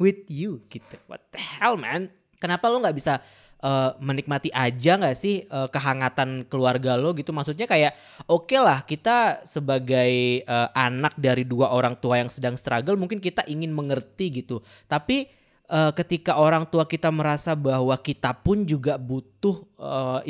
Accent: native